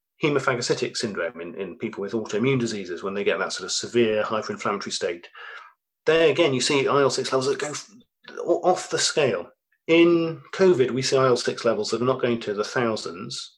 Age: 40-59